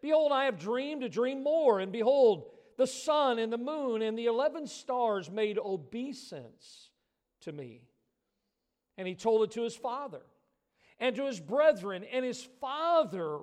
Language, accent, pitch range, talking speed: English, American, 160-235 Hz, 160 wpm